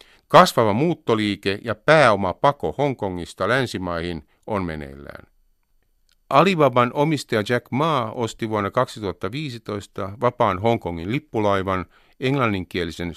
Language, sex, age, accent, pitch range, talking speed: Finnish, male, 50-69, native, 90-130 Hz, 90 wpm